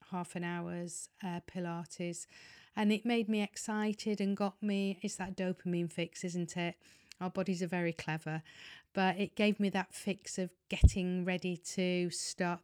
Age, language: 40-59, English